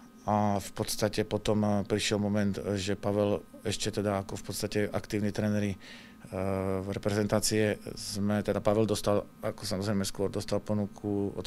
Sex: male